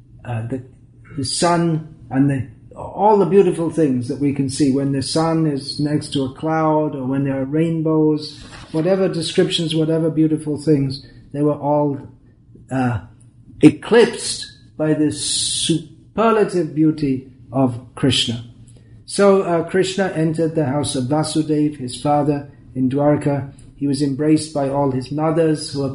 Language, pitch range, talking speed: English, 135-160 Hz, 145 wpm